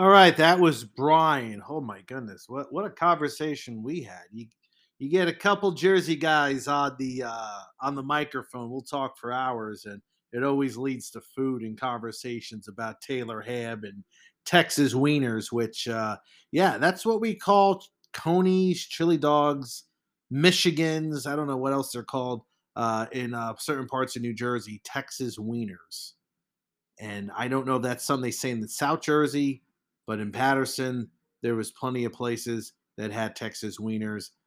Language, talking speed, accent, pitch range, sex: English, 170 wpm, American, 115-160 Hz, male